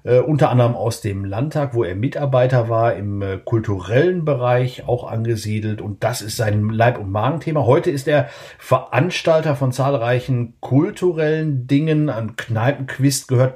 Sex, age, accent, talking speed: male, 50-69, German, 140 wpm